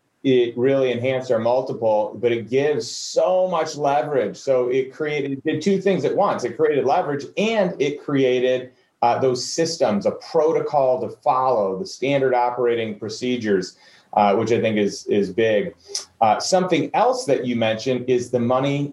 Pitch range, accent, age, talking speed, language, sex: 120-165 Hz, American, 30-49, 170 wpm, English, male